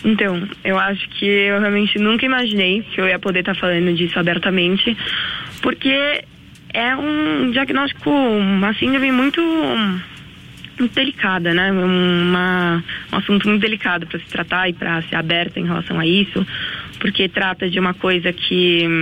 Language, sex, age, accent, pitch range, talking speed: Portuguese, female, 20-39, Brazilian, 175-205 Hz, 155 wpm